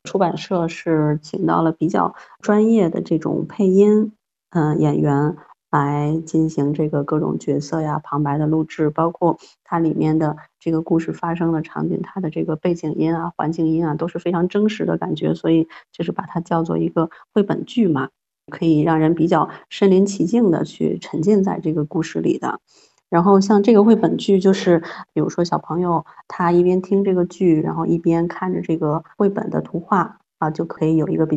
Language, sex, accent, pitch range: Chinese, female, native, 160-185 Hz